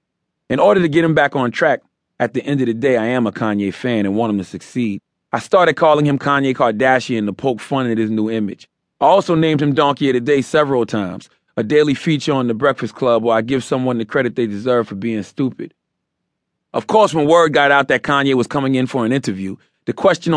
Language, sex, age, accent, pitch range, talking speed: English, male, 30-49, American, 105-140 Hz, 240 wpm